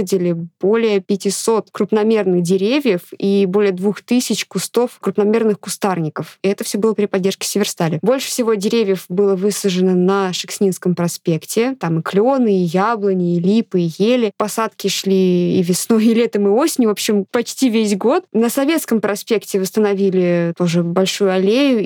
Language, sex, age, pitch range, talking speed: Russian, female, 20-39, 185-225 Hz, 145 wpm